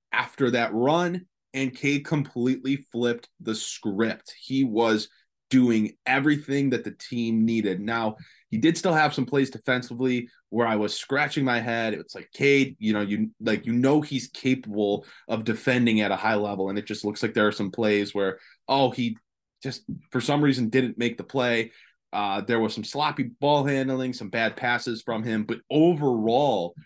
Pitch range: 110-135 Hz